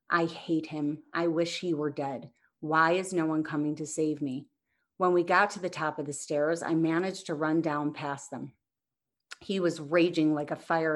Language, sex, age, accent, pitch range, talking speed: English, female, 30-49, American, 150-170 Hz, 210 wpm